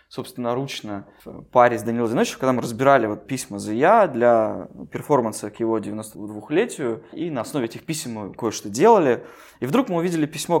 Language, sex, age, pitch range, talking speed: Russian, male, 20-39, 130-180 Hz, 180 wpm